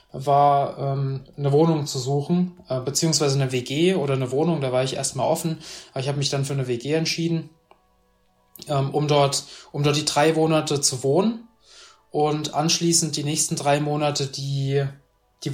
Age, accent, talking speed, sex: 20-39, German, 175 wpm, male